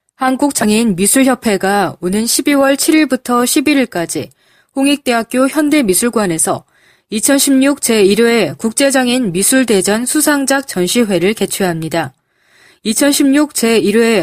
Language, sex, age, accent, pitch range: Korean, female, 20-39, native, 190-265 Hz